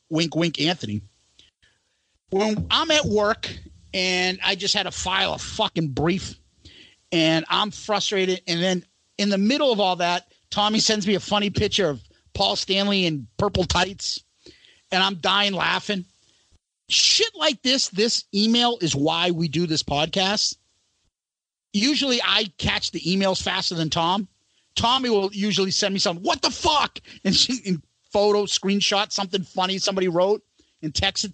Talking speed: 155 wpm